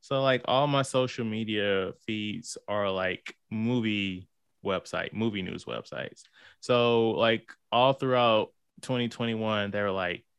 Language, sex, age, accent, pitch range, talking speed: English, male, 20-39, American, 105-140 Hz, 125 wpm